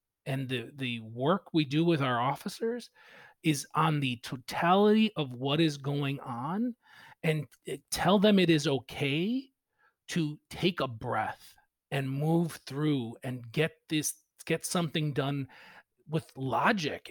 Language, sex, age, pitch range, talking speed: English, male, 40-59, 135-175 Hz, 135 wpm